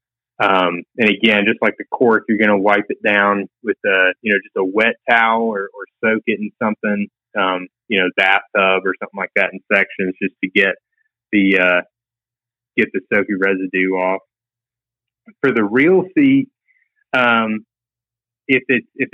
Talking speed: 170 wpm